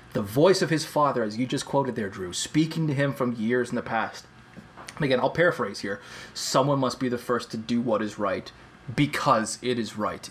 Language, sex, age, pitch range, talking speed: English, male, 20-39, 125-175 Hz, 215 wpm